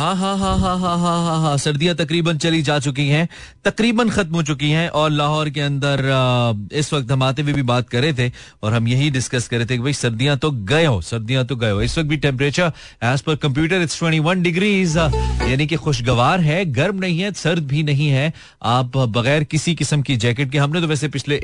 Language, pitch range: Hindi, 115-155 Hz